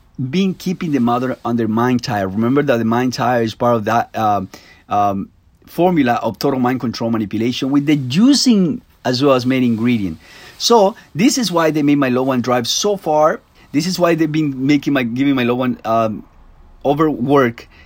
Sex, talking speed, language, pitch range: male, 190 wpm, English, 120-170 Hz